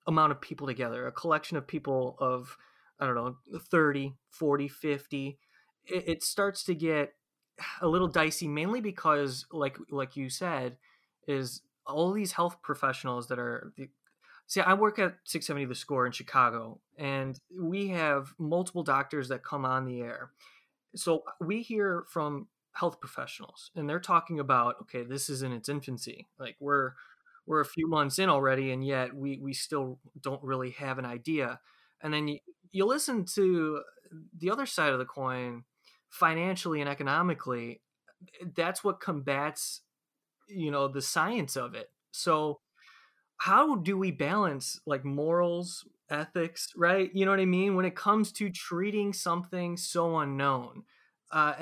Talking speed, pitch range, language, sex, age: 160 wpm, 135-175 Hz, English, male, 20-39